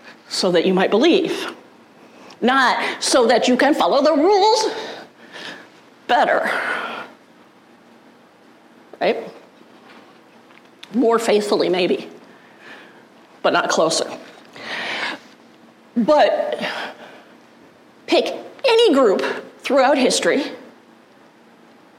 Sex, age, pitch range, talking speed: female, 40-59, 215-355 Hz, 75 wpm